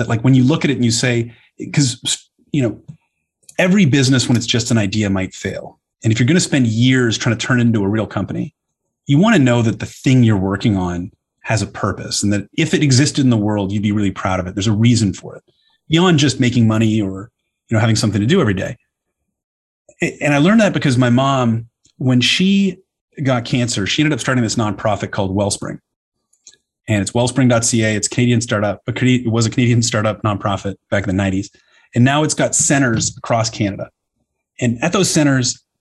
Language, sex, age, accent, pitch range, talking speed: English, male, 30-49, American, 110-135 Hz, 215 wpm